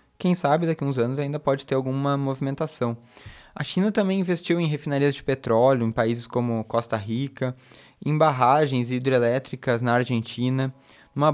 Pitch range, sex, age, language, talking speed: 120-150 Hz, male, 20-39, Portuguese, 160 wpm